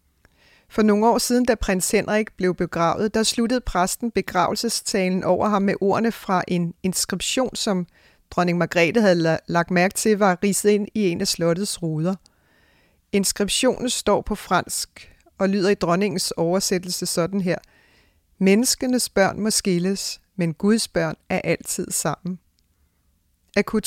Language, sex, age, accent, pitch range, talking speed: English, female, 40-59, Danish, 170-215 Hz, 145 wpm